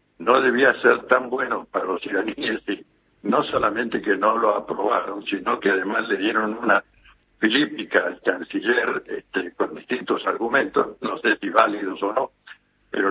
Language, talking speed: Spanish, 160 wpm